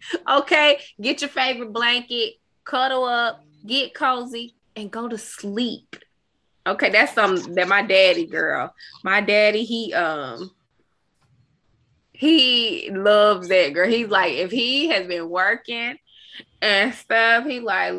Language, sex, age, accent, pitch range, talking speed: English, female, 20-39, American, 205-275 Hz, 130 wpm